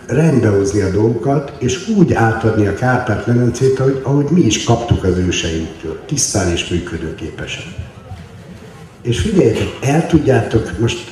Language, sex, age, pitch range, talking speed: Hungarian, male, 60-79, 90-120 Hz, 120 wpm